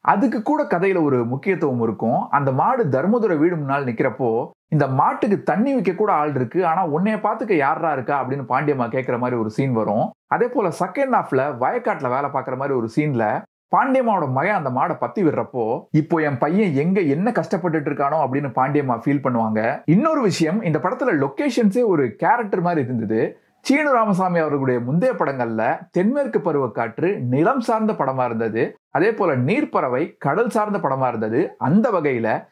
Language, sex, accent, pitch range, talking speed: Tamil, male, native, 130-210 Hz, 160 wpm